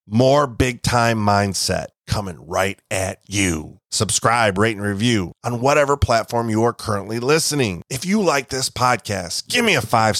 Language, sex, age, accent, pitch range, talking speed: English, male, 30-49, American, 100-130 Hz, 165 wpm